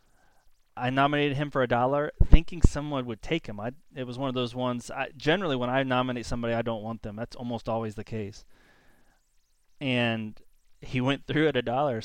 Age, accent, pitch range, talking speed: 30-49, American, 115-140 Hz, 200 wpm